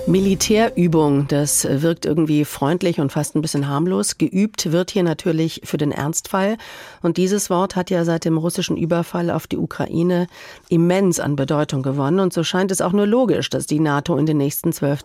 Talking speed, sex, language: 185 wpm, female, German